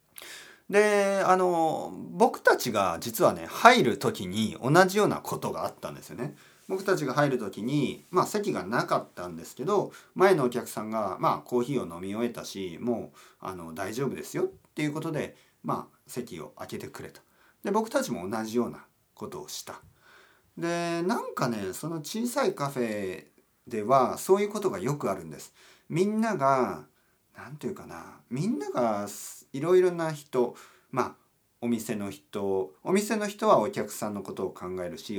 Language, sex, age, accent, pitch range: Japanese, male, 40-59, native, 125-190 Hz